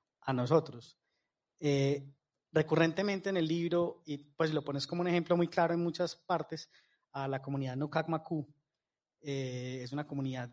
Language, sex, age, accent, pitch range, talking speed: Spanish, male, 20-39, Colombian, 135-160 Hz, 160 wpm